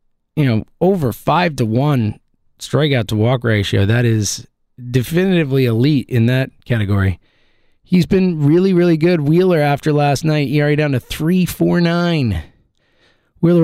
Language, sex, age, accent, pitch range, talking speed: English, male, 20-39, American, 120-170 Hz, 145 wpm